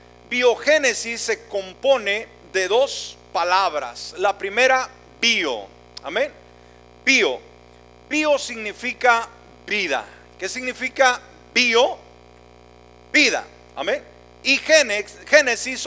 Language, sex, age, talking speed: Spanish, male, 40-59, 85 wpm